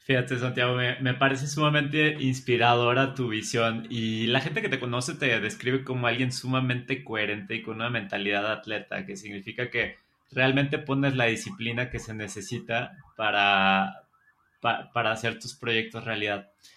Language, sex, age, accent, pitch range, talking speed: Spanish, male, 30-49, Mexican, 110-130 Hz, 155 wpm